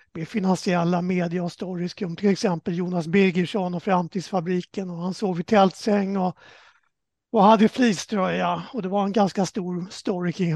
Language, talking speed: Swedish, 165 wpm